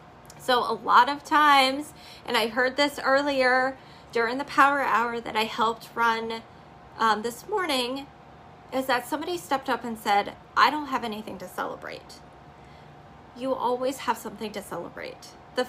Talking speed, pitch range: 155 wpm, 220-265 Hz